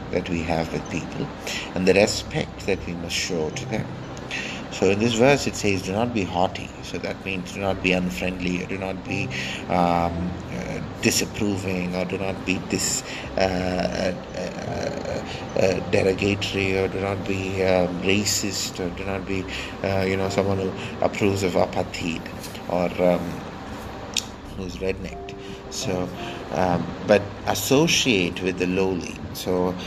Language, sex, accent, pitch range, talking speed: English, male, Indian, 85-95 Hz, 160 wpm